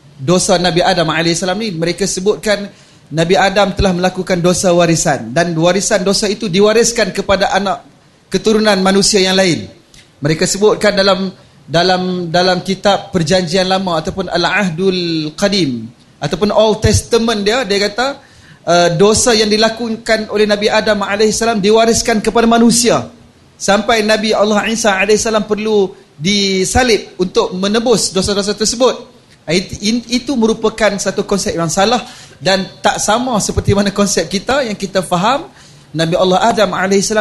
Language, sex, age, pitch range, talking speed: Malay, male, 30-49, 180-225 Hz, 135 wpm